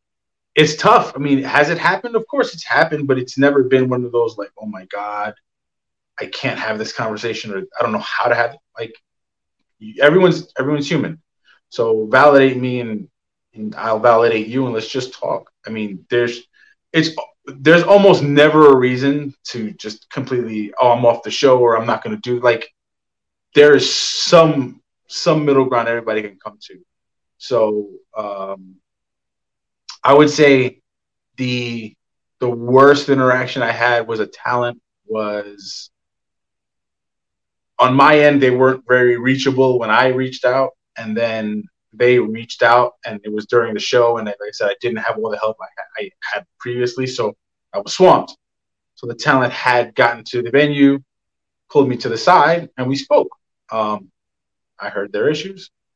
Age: 30-49